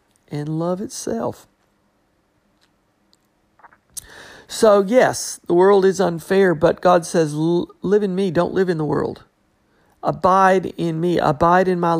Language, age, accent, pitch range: English, 50-69, American, 145-190 Hz